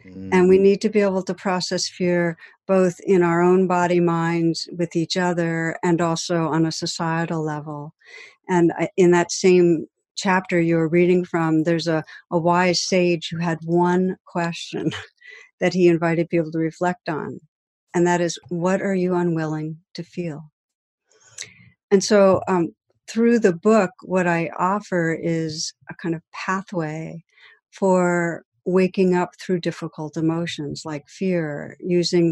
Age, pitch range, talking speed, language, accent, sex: 60-79, 160-180 Hz, 150 wpm, English, American, female